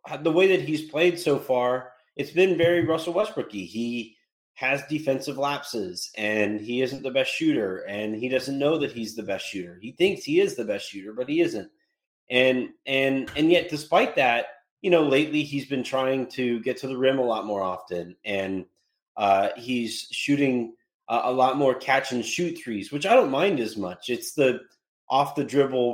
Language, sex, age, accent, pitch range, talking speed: English, male, 30-49, American, 115-150 Hz, 195 wpm